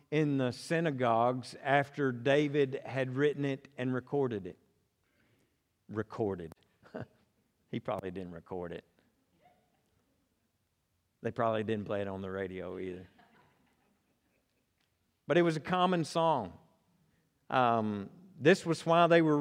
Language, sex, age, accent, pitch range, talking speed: English, male, 50-69, American, 110-155 Hz, 120 wpm